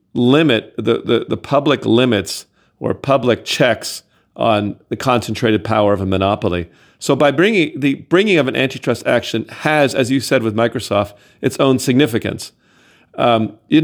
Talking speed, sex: 155 wpm, male